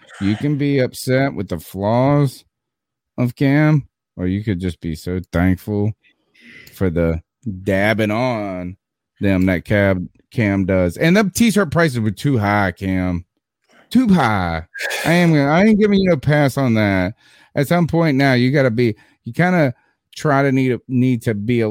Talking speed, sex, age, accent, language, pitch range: 170 wpm, male, 30-49, American, English, 100-135 Hz